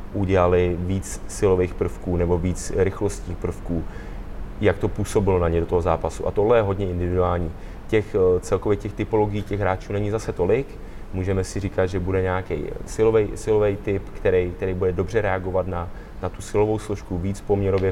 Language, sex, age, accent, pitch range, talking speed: Czech, male, 20-39, native, 95-100 Hz, 165 wpm